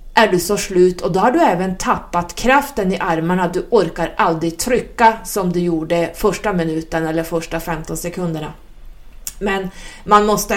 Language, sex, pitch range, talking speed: Swedish, female, 175-240 Hz, 165 wpm